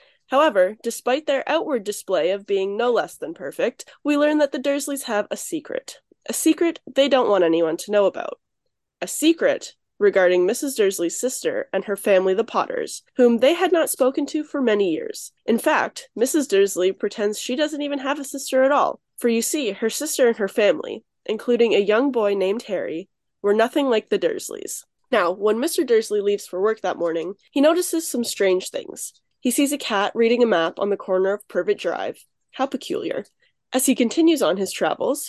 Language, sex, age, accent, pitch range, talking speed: English, female, 10-29, American, 200-300 Hz, 195 wpm